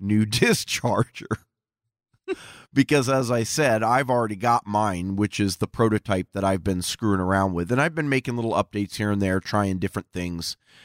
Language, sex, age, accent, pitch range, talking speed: English, male, 30-49, American, 95-115 Hz, 175 wpm